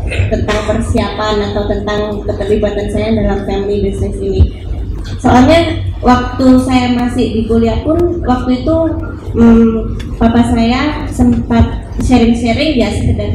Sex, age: female, 20-39